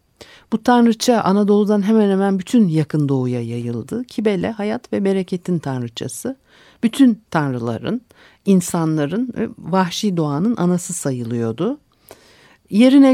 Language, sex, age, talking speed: Turkish, female, 60-79, 100 wpm